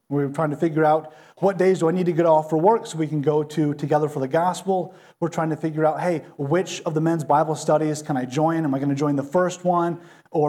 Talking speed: 275 wpm